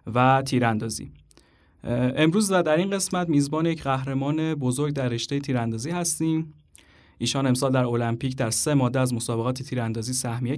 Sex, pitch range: male, 120-150 Hz